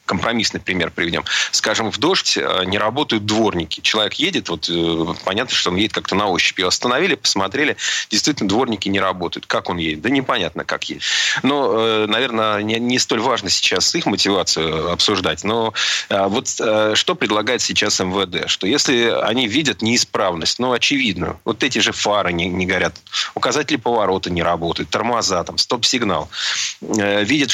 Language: Russian